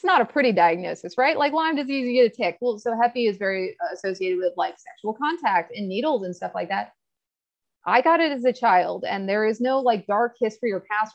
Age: 30-49